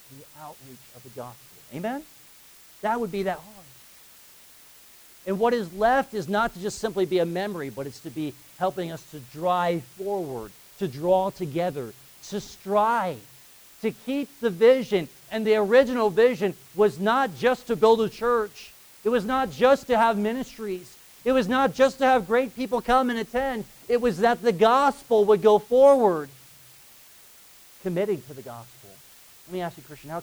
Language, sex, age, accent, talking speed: English, male, 50-69, American, 175 wpm